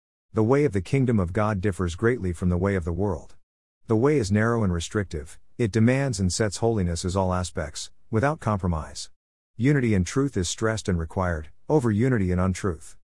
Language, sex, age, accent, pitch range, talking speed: English, male, 50-69, American, 90-110 Hz, 190 wpm